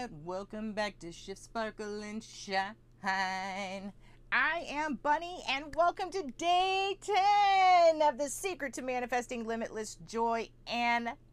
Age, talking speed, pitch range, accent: 40-59, 120 wpm, 195-300 Hz, American